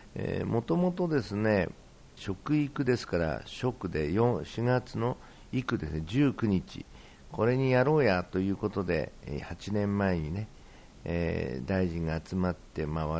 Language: Japanese